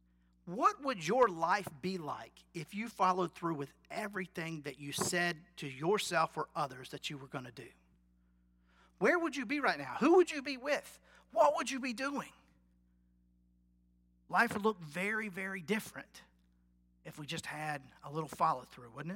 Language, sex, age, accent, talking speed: English, male, 40-59, American, 175 wpm